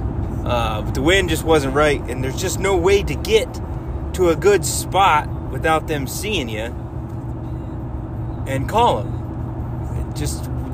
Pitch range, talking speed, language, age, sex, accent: 115-140 Hz, 145 wpm, English, 30-49, male, American